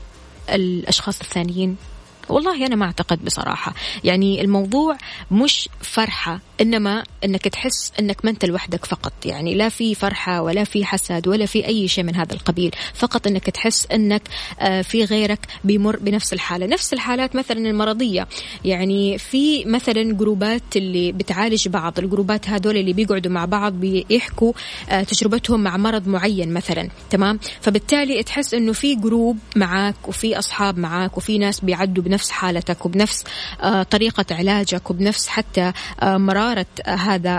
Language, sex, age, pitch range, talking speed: Arabic, female, 20-39, 185-225 Hz, 140 wpm